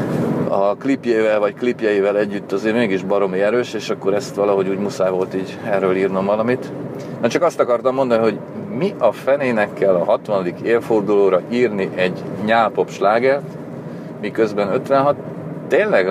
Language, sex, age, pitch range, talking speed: Hungarian, male, 40-59, 95-125 Hz, 150 wpm